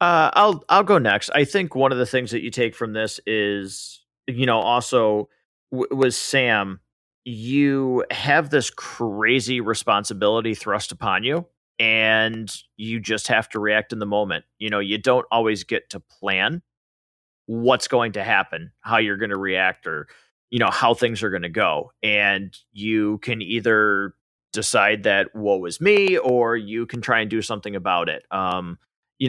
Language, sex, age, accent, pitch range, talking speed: English, male, 30-49, American, 105-130 Hz, 170 wpm